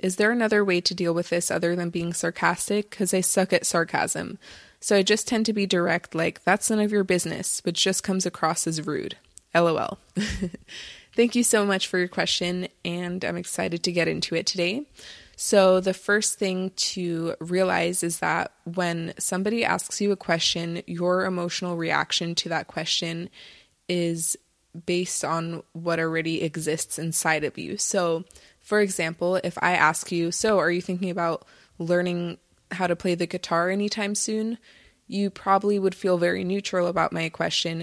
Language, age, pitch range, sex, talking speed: English, 20-39, 170-190 Hz, female, 175 wpm